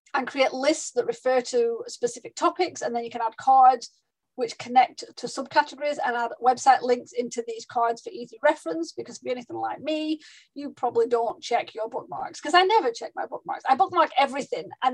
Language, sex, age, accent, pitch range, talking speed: English, female, 30-49, British, 240-315 Hz, 200 wpm